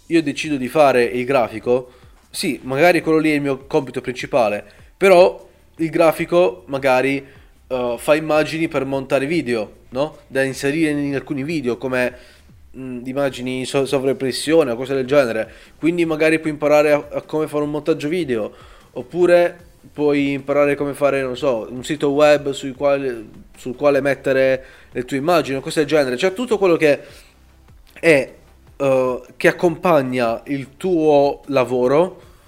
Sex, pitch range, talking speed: male, 125-160 Hz, 155 wpm